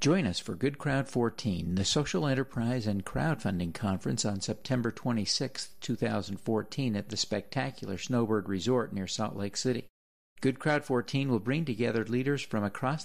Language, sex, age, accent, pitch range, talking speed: English, male, 50-69, American, 105-130 Hz, 155 wpm